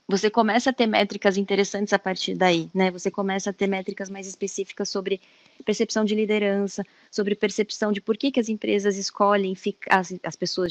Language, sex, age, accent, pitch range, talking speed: Portuguese, female, 20-39, Brazilian, 190-215 Hz, 185 wpm